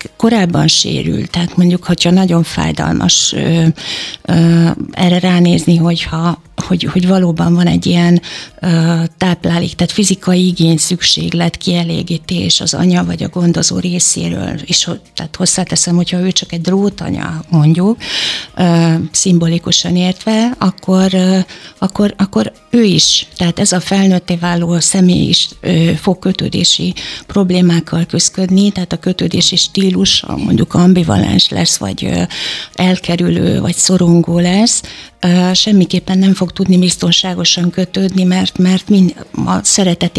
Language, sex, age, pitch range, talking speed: Hungarian, female, 60-79, 170-185 Hz, 120 wpm